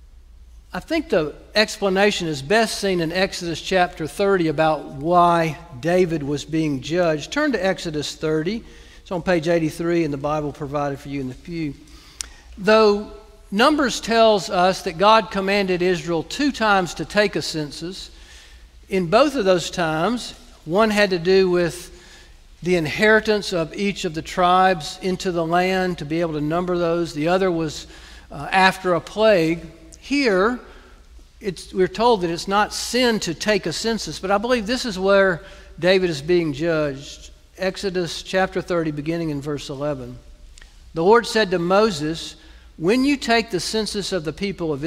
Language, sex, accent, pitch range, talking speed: English, male, American, 155-200 Hz, 165 wpm